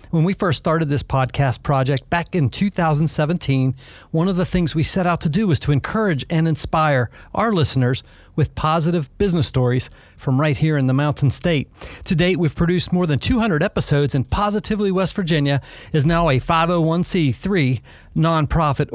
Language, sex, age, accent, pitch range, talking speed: English, male, 40-59, American, 130-170 Hz, 170 wpm